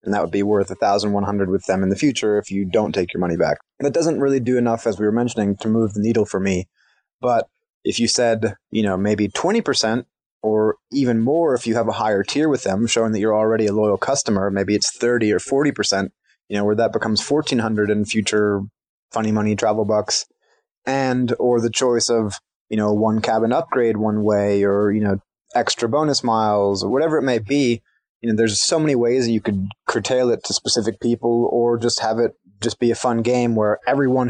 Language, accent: English, American